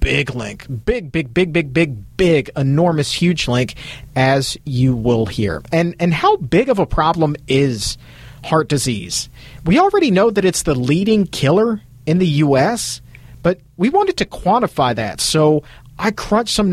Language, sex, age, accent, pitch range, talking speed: English, male, 40-59, American, 125-170 Hz, 165 wpm